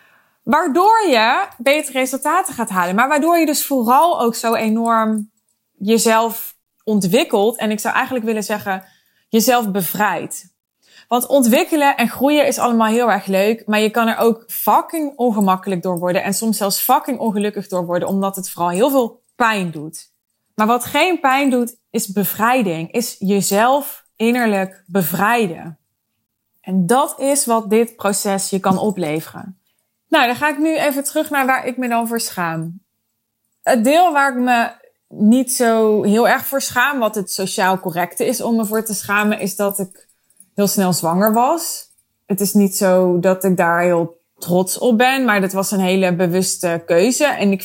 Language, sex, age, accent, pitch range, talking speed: Dutch, female, 20-39, Dutch, 185-245 Hz, 175 wpm